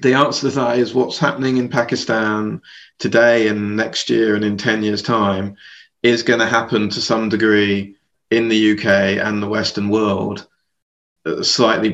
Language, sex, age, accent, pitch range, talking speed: English, male, 20-39, British, 110-120 Hz, 165 wpm